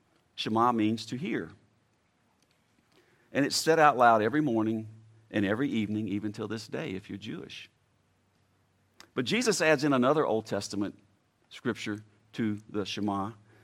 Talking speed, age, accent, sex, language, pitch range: 140 wpm, 50-69, American, male, English, 110-150 Hz